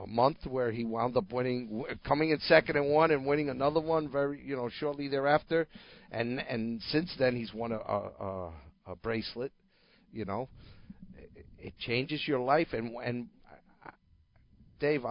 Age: 50-69